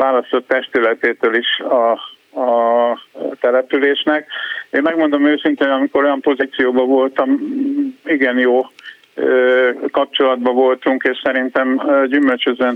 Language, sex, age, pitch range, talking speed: Hungarian, male, 50-69, 130-140 Hz, 100 wpm